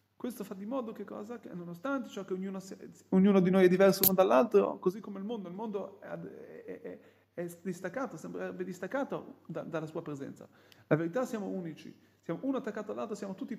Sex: male